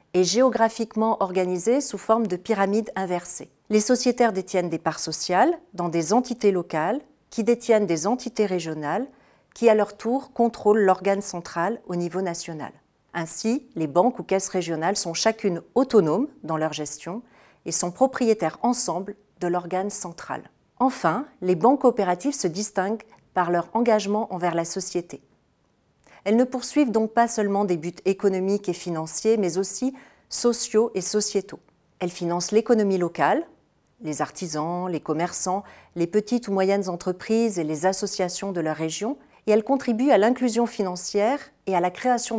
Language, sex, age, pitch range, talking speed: French, female, 40-59, 180-230 Hz, 155 wpm